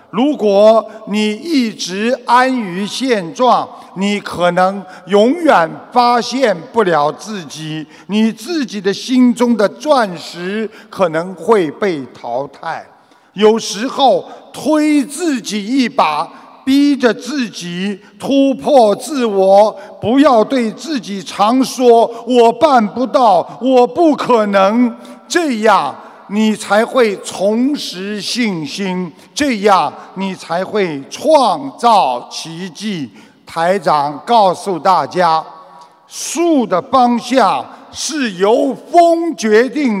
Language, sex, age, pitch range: Chinese, male, 50-69, 200-260 Hz